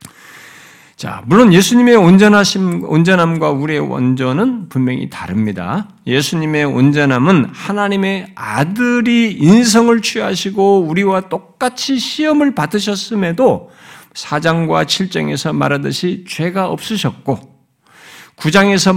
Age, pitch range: 50-69, 135-225 Hz